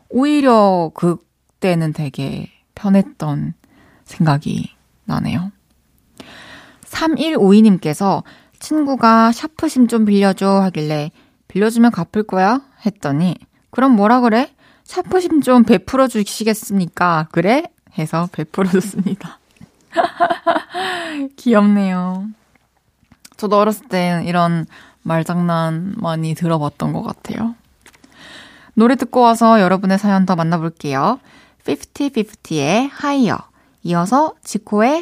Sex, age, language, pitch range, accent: female, 20-39, Korean, 175-255 Hz, native